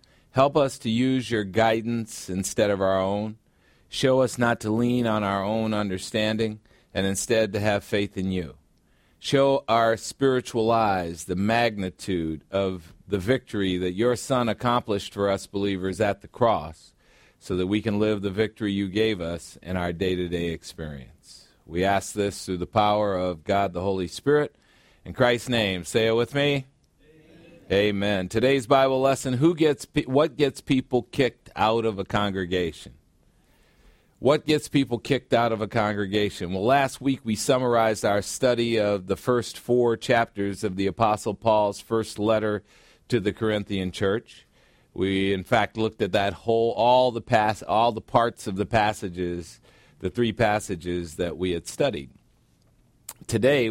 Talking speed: 165 wpm